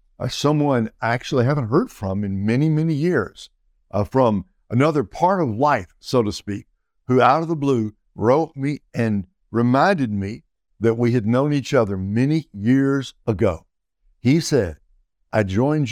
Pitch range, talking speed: 105-140 Hz, 160 wpm